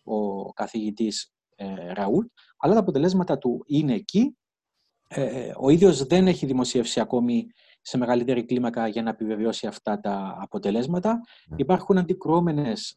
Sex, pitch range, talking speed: male, 125-185 Hz, 130 wpm